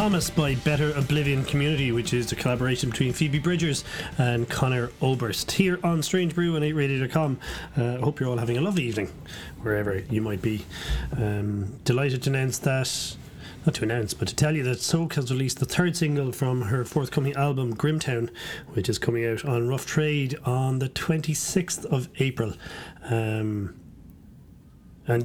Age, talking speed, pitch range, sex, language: 30-49, 170 wpm, 120-150 Hz, male, English